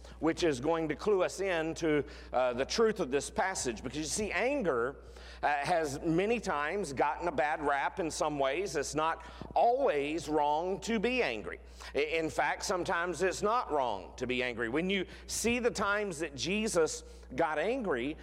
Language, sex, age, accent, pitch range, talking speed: English, male, 40-59, American, 155-210 Hz, 180 wpm